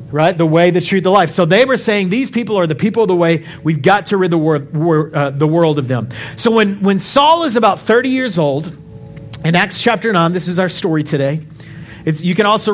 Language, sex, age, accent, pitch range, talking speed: English, male, 40-59, American, 155-220 Hz, 240 wpm